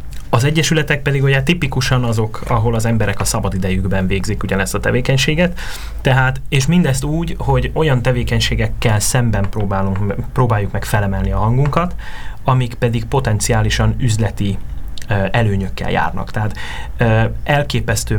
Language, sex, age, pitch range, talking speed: Hungarian, male, 30-49, 105-130 Hz, 120 wpm